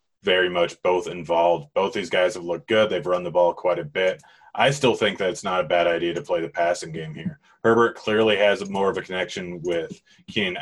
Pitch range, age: 90-110 Hz, 30-49